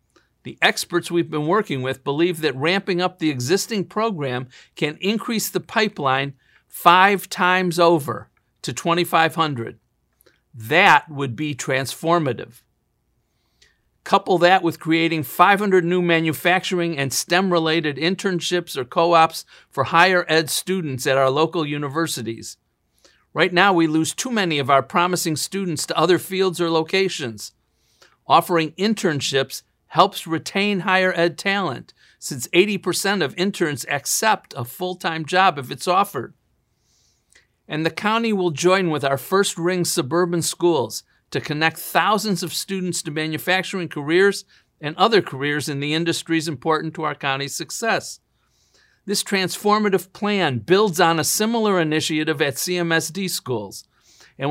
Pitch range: 150-185 Hz